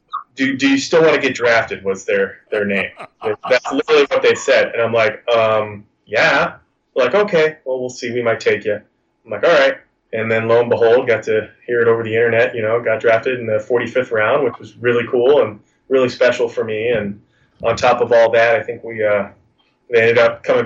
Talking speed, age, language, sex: 230 wpm, 20-39, English, male